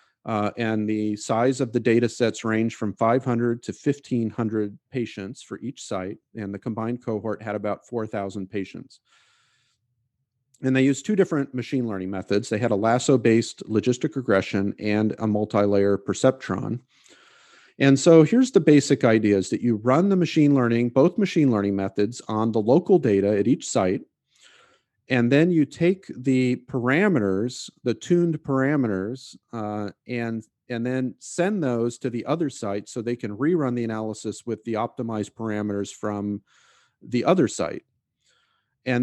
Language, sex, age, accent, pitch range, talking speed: English, male, 40-59, American, 105-130 Hz, 155 wpm